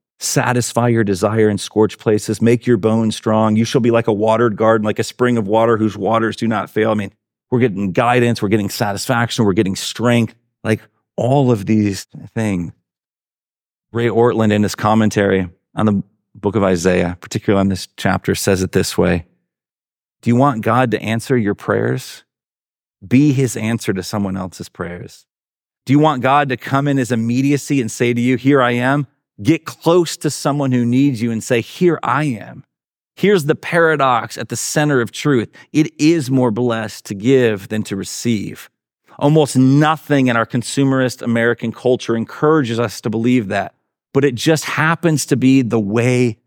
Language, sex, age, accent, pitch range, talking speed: English, male, 40-59, American, 110-145 Hz, 180 wpm